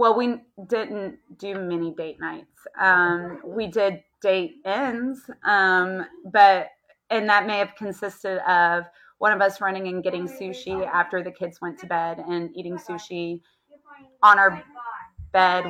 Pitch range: 180-210 Hz